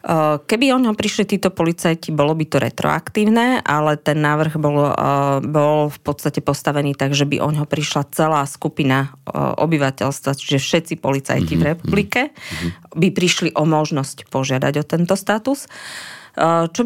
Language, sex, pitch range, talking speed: Slovak, female, 135-155 Hz, 145 wpm